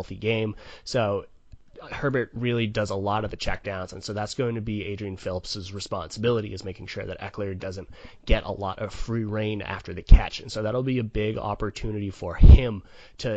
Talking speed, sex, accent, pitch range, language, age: 200 wpm, male, American, 95-115 Hz, English, 20-39